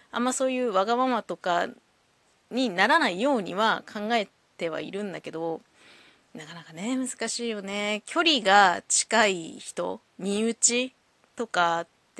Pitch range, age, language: 175-245 Hz, 20-39, Japanese